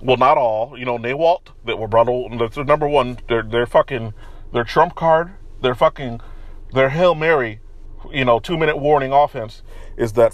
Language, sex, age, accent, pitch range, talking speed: English, male, 40-59, American, 110-160 Hz, 185 wpm